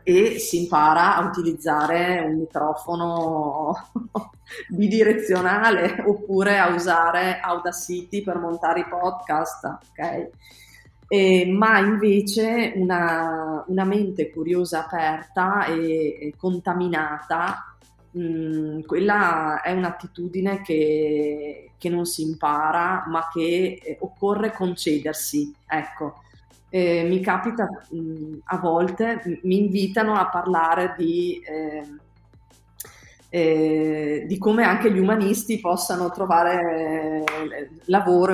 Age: 30-49